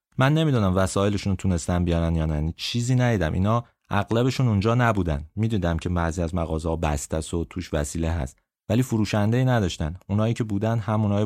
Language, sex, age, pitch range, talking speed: Persian, male, 30-49, 85-110 Hz, 160 wpm